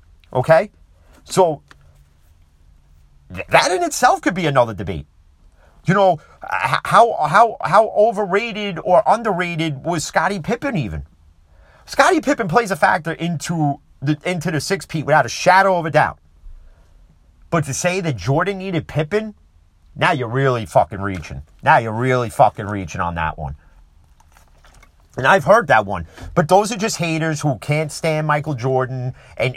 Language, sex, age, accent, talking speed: English, male, 40-59, American, 150 wpm